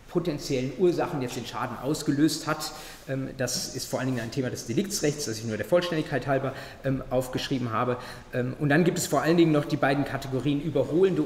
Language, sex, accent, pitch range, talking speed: German, male, German, 130-170 Hz, 190 wpm